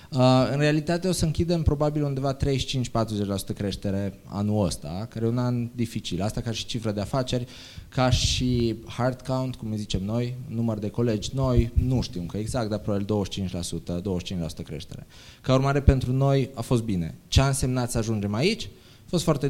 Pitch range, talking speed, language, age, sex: 100-125 Hz, 185 wpm, Romanian, 20-39, male